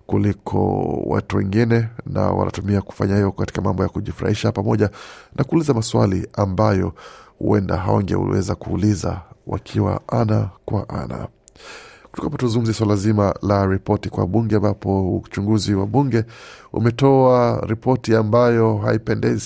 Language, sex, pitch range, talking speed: Swahili, male, 100-115 Hz, 120 wpm